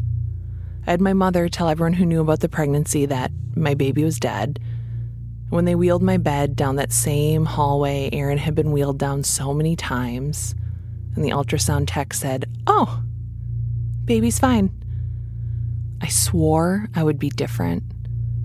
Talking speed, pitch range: 155 wpm, 110-165 Hz